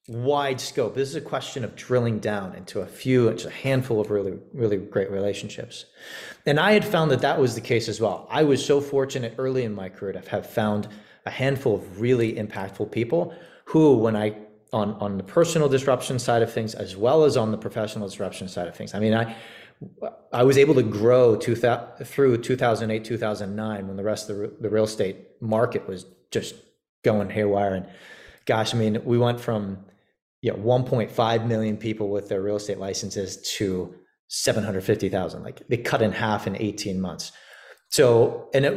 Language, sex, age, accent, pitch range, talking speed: English, male, 30-49, American, 105-130 Hz, 190 wpm